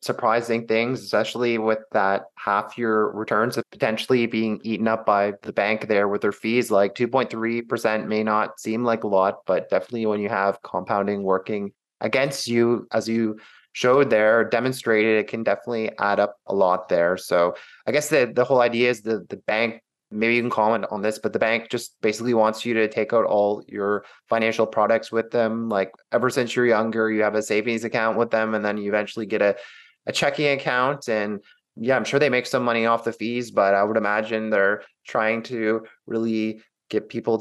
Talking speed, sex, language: 200 wpm, male, English